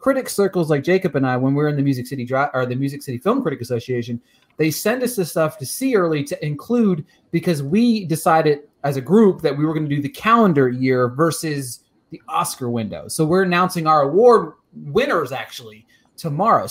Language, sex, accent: English, male, American